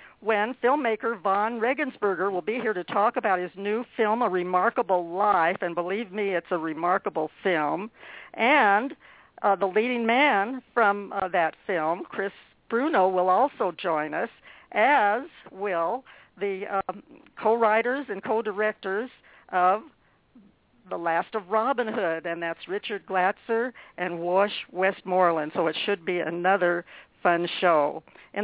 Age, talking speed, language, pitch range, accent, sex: 60-79, 140 wpm, English, 185-230 Hz, American, female